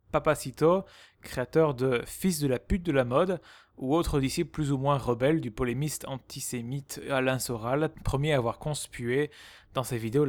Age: 20-39